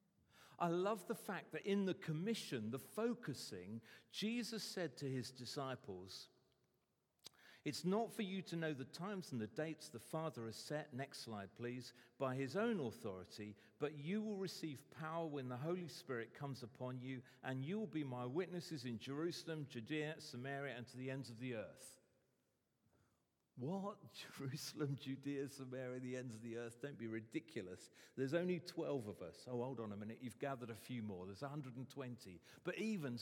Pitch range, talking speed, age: 120-160 Hz, 175 wpm, 40-59